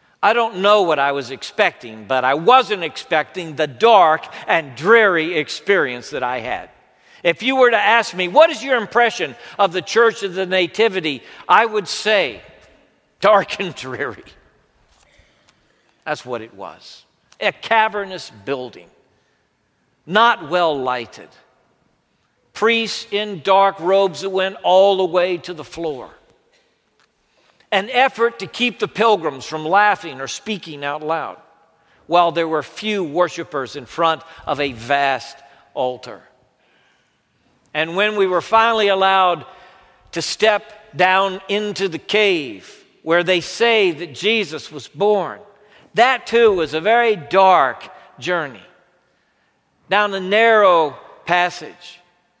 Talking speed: 130 wpm